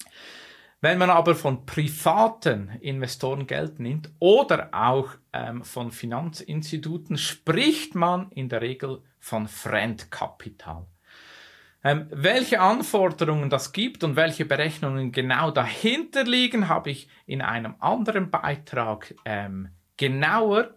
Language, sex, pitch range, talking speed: German, male, 120-165 Hz, 110 wpm